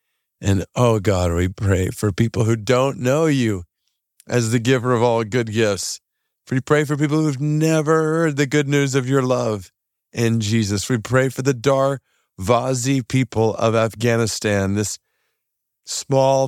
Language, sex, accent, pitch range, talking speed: English, male, American, 100-125 Hz, 160 wpm